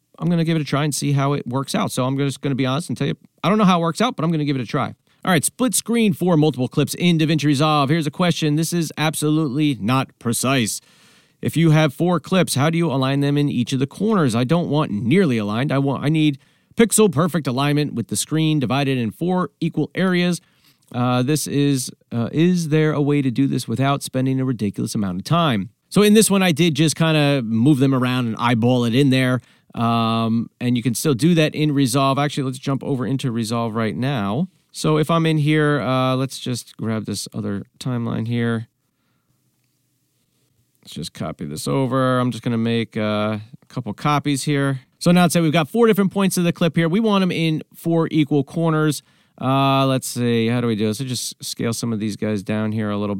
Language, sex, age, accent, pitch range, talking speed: English, male, 40-59, American, 120-160 Hz, 235 wpm